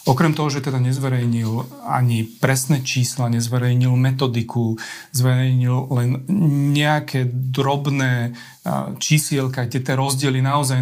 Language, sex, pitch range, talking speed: Slovak, male, 125-140 Hz, 100 wpm